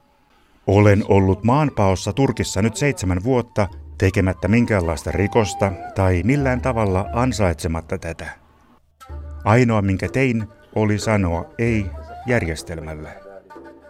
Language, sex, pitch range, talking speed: Finnish, male, 90-115 Hz, 95 wpm